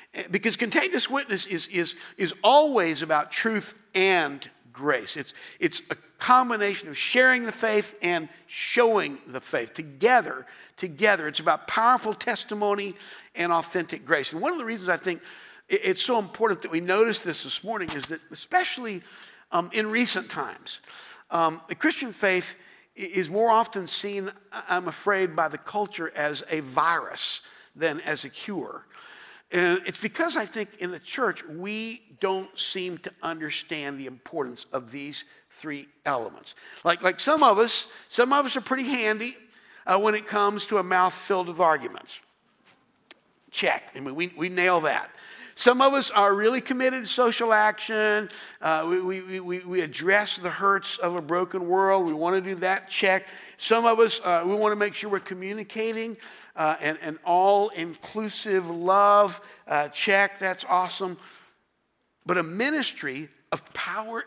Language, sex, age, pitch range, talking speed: English, male, 50-69, 175-220 Hz, 160 wpm